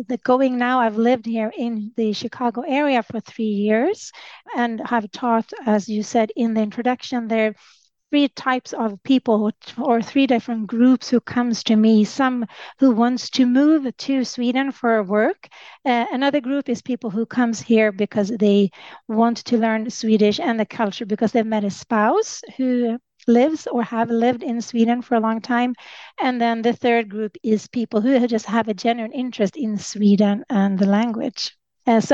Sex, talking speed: female, 180 wpm